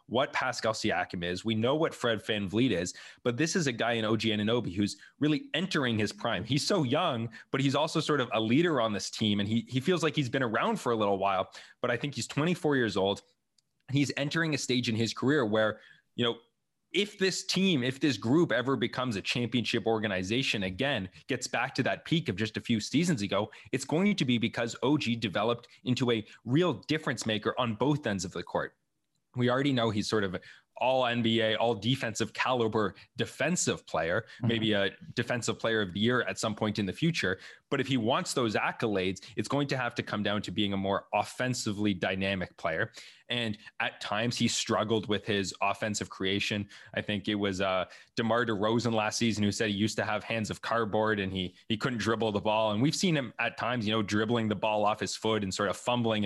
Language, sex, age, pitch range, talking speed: English, male, 20-39, 105-130 Hz, 220 wpm